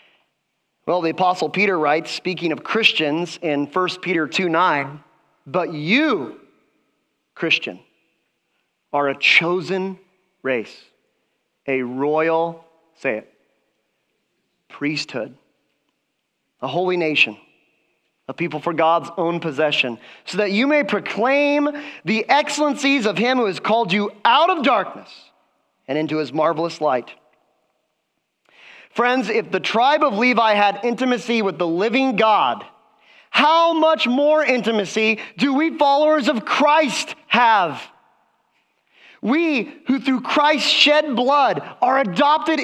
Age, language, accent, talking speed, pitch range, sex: 30-49, English, American, 120 wpm, 170-280 Hz, male